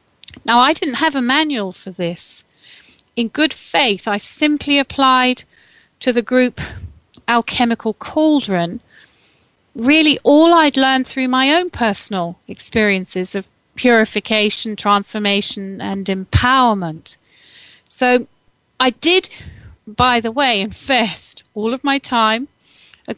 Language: Italian